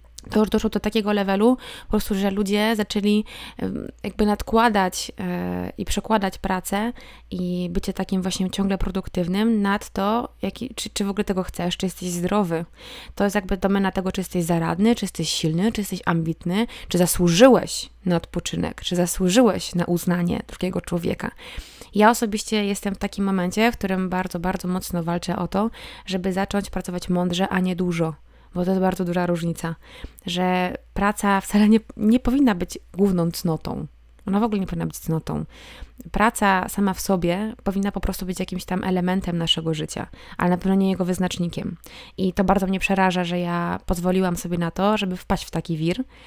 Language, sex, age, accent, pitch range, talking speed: Polish, female, 20-39, native, 180-210 Hz, 170 wpm